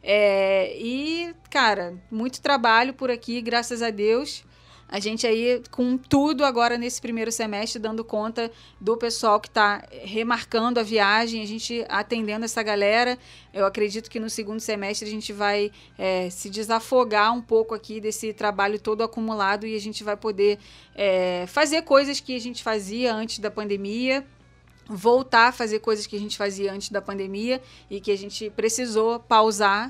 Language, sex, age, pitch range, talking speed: Portuguese, female, 20-39, 215-255 Hz, 165 wpm